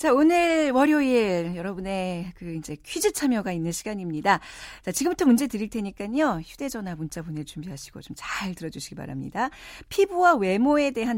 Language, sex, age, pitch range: Korean, female, 40-59, 175-275 Hz